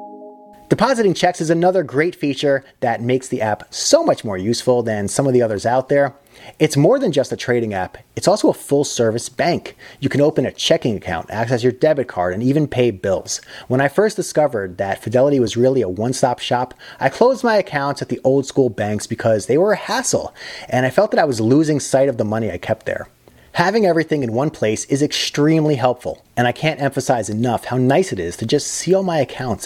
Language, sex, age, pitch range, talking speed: English, male, 30-49, 120-150 Hz, 220 wpm